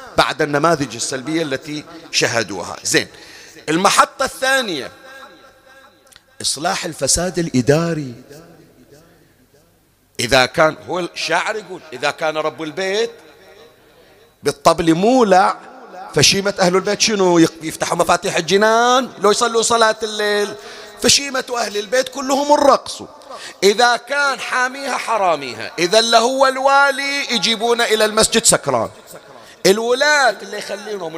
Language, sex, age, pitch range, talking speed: Arabic, male, 40-59, 160-245 Hz, 100 wpm